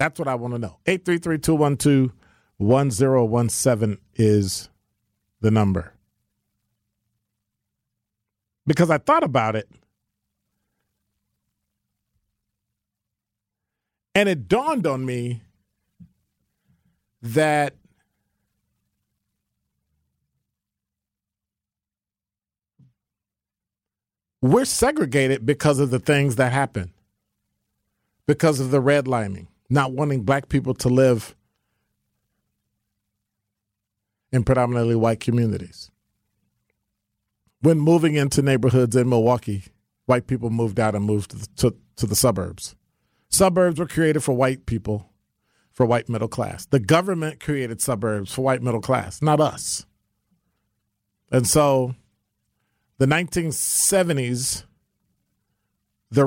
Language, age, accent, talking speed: English, 50-69, American, 100 wpm